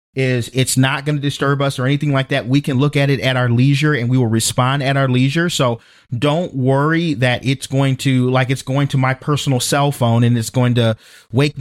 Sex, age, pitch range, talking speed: male, 40-59, 130-175 Hz, 240 wpm